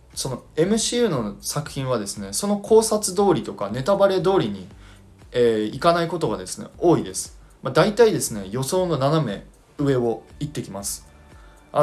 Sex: male